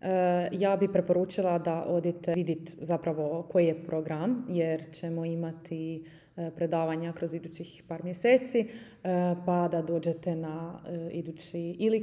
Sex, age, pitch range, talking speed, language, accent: female, 20-39, 165-180 Hz, 140 wpm, Croatian, native